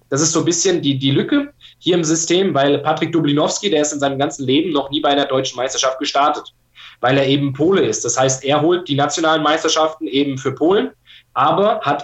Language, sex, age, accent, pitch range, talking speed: German, male, 20-39, German, 130-150 Hz, 220 wpm